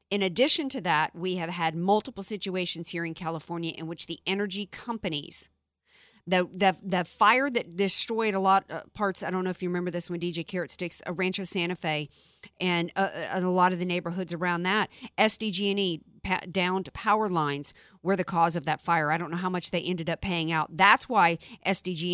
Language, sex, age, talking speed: English, female, 50-69, 205 wpm